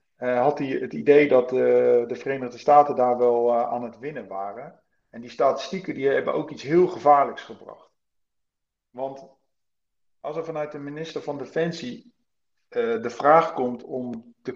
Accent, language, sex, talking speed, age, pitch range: Dutch, Dutch, male, 170 wpm, 40-59, 125-160 Hz